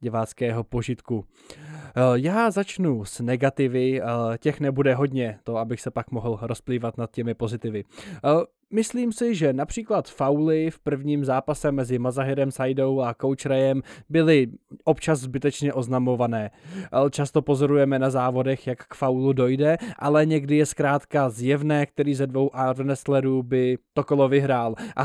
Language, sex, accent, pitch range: Czech, male, native, 125-145 Hz